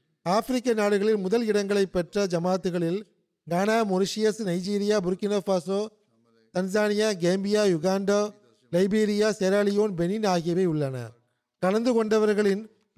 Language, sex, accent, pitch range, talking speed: Tamil, male, native, 180-210 Hz, 90 wpm